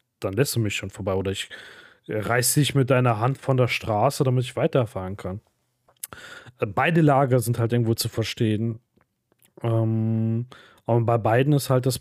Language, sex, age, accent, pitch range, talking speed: German, male, 30-49, German, 120-140 Hz, 170 wpm